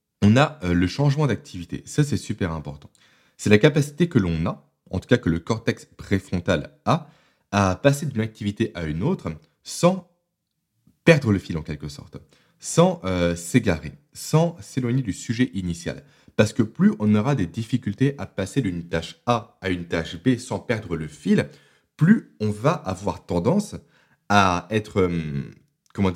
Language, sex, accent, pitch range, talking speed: French, male, French, 90-140 Hz, 165 wpm